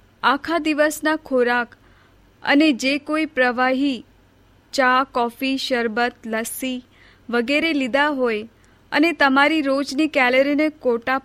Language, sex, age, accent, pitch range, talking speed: Hindi, female, 30-49, native, 235-295 Hz, 90 wpm